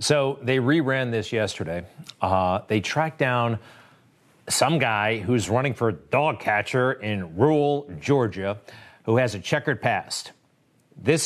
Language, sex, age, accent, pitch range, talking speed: English, male, 40-59, American, 110-145 Hz, 135 wpm